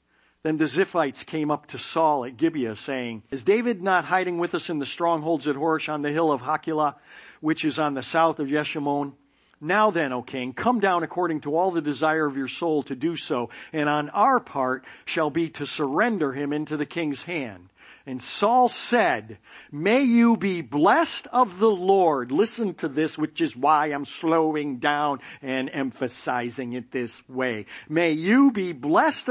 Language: English